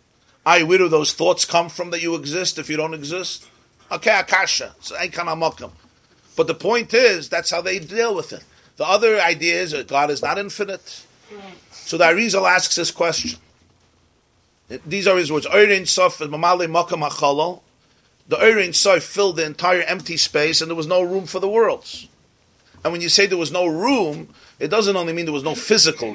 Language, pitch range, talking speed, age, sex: English, 130-180 Hz, 180 wpm, 40-59, male